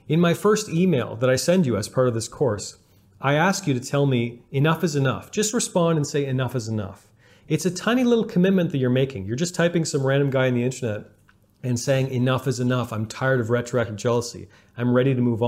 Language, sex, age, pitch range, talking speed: English, male, 40-59, 125-165 Hz, 235 wpm